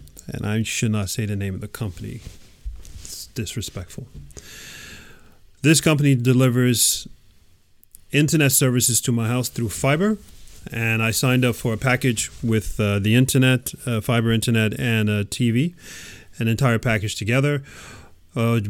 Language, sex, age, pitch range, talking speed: English, male, 30-49, 105-130 Hz, 140 wpm